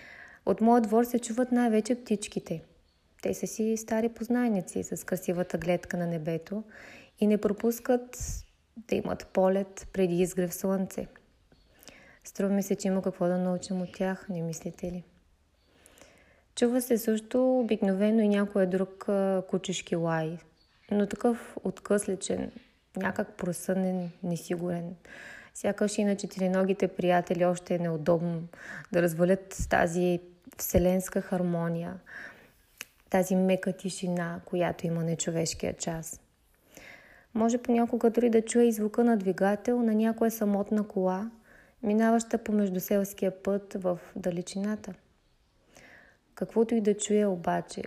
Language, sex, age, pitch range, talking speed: Bulgarian, female, 20-39, 180-215 Hz, 120 wpm